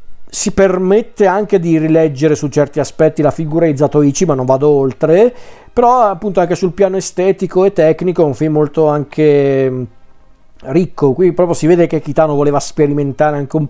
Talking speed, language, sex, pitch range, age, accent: 175 wpm, Italian, male, 140-165 Hz, 40-59, native